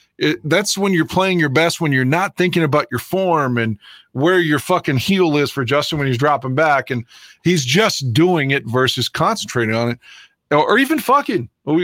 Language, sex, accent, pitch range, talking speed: English, male, American, 140-190 Hz, 200 wpm